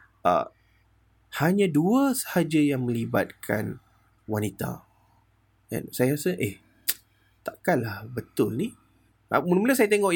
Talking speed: 110 wpm